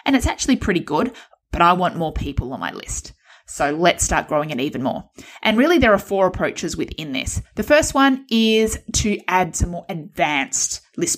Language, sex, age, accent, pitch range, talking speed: English, female, 20-39, Australian, 170-230 Hz, 205 wpm